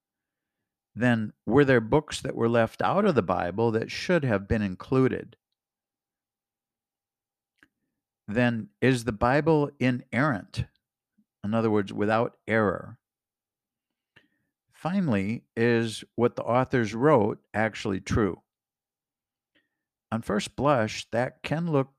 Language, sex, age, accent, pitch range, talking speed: English, male, 50-69, American, 100-125 Hz, 110 wpm